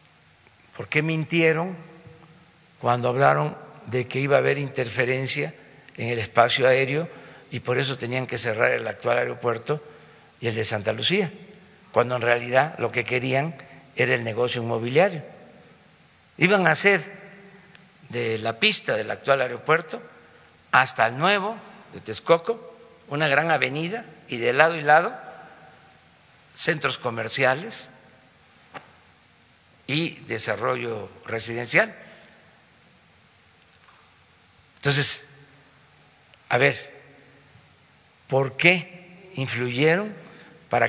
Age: 50-69